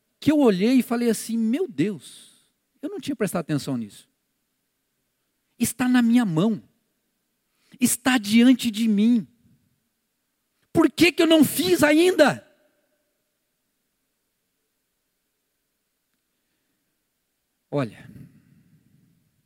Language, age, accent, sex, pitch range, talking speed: Portuguese, 50-69, Brazilian, male, 195-290 Hz, 95 wpm